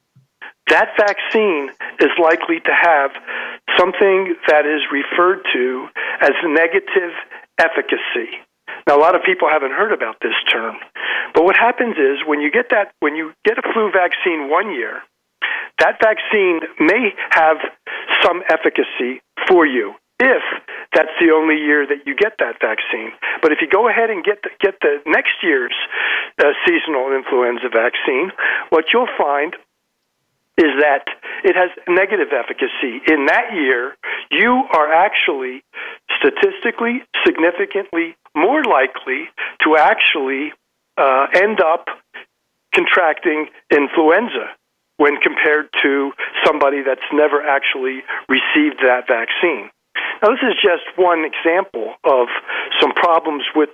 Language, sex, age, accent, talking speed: English, male, 50-69, American, 135 wpm